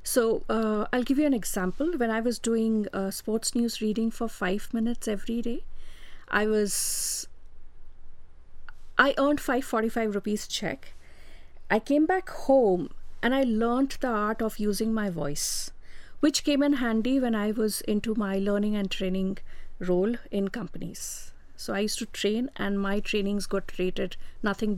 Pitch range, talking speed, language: 195-240 Hz, 155 wpm, English